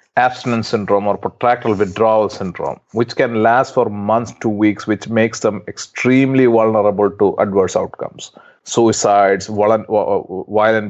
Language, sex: English, male